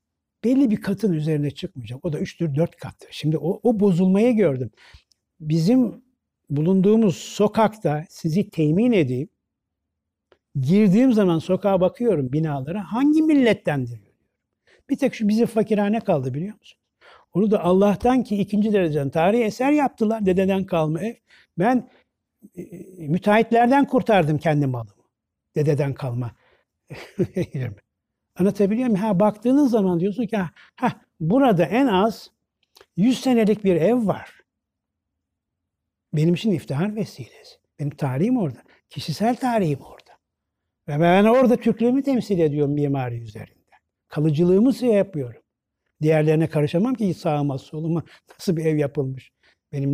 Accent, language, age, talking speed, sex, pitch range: native, Turkish, 60-79, 120 wpm, male, 145-215 Hz